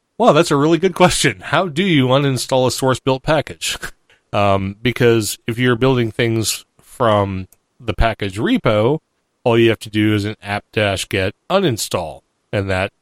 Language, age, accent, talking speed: English, 40-59, American, 160 wpm